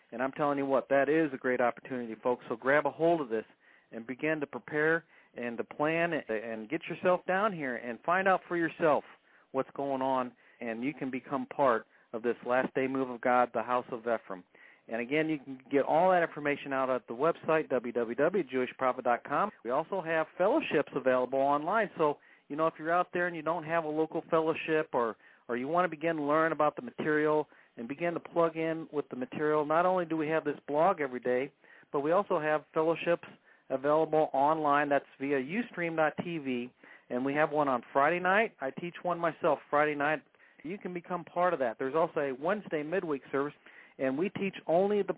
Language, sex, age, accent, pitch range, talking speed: English, male, 40-59, American, 130-165 Hz, 205 wpm